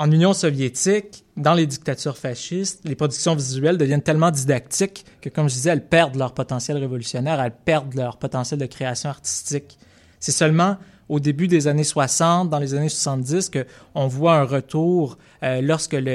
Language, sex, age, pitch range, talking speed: French, male, 20-39, 130-155 Hz, 170 wpm